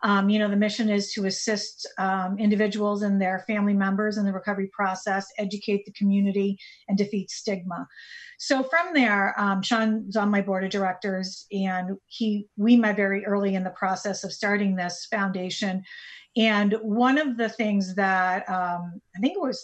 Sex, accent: female, American